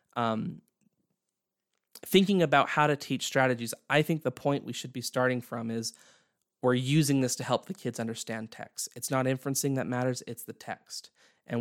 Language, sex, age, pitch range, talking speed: English, male, 20-39, 120-160 Hz, 180 wpm